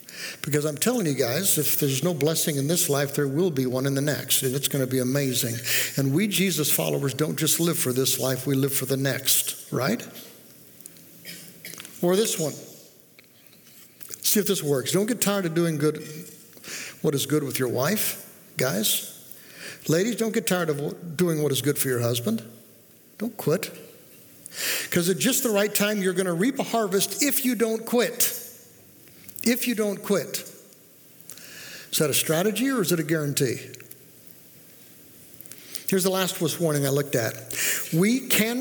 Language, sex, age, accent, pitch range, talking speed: English, male, 60-79, American, 145-210 Hz, 175 wpm